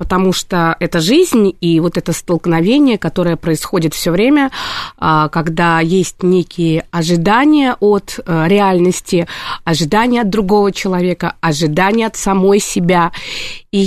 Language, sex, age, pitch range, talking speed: Russian, female, 20-39, 175-225 Hz, 115 wpm